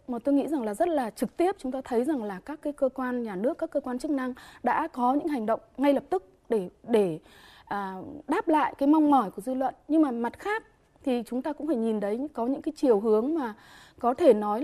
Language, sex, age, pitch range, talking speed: Vietnamese, female, 20-39, 235-305 Hz, 260 wpm